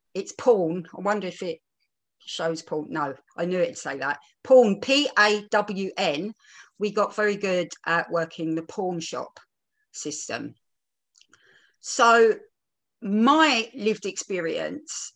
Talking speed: 120 wpm